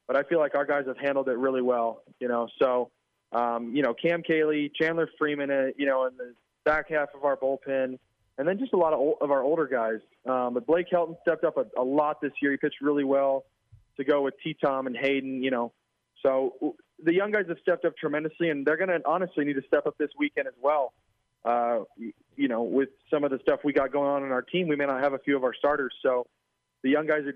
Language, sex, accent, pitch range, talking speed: English, male, American, 130-150 Hz, 255 wpm